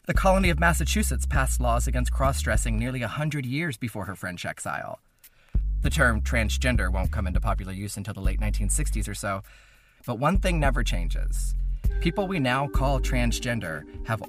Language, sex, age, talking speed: English, male, 30-49, 170 wpm